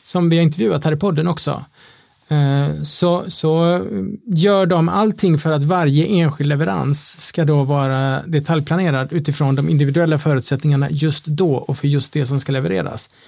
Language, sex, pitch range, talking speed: Swedish, male, 140-165 Hz, 160 wpm